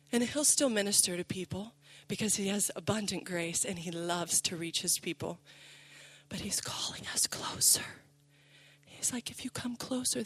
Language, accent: English, American